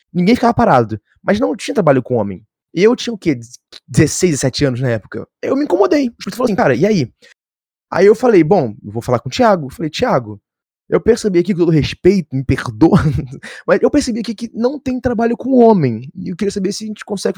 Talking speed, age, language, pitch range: 230 wpm, 20-39, Portuguese, 135-200 Hz